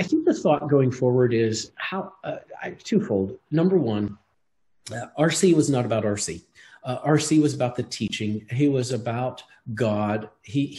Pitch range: 105-140 Hz